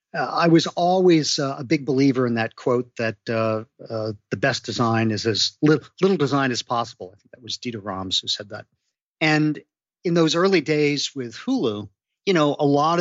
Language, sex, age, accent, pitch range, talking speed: English, male, 50-69, American, 115-150 Hz, 205 wpm